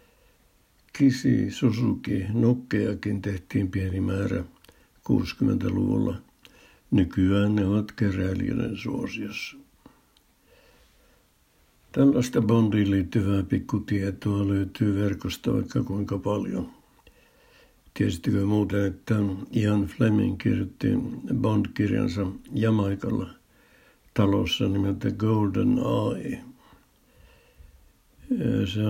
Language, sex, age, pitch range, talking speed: Finnish, male, 60-79, 100-120 Hz, 75 wpm